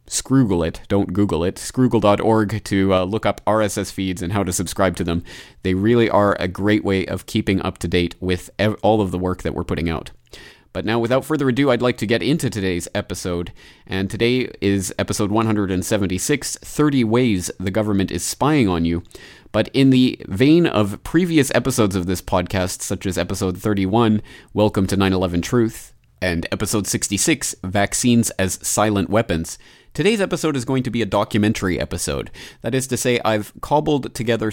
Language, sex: English, male